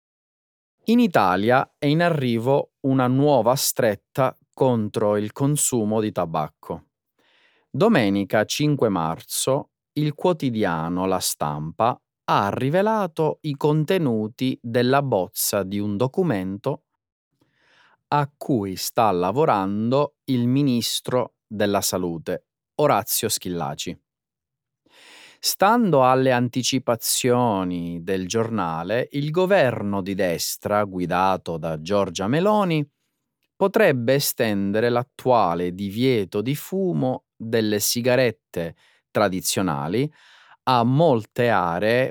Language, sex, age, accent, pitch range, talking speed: Italian, male, 30-49, native, 100-140 Hz, 90 wpm